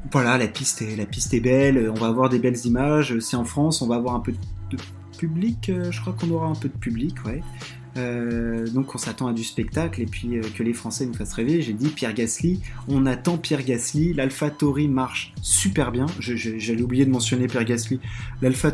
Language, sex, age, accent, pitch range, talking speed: French, male, 20-39, French, 120-155 Hz, 225 wpm